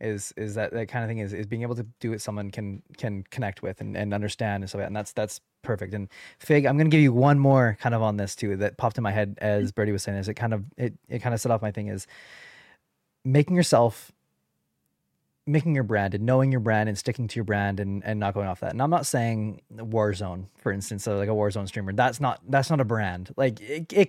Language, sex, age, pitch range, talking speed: English, male, 20-39, 105-135 Hz, 260 wpm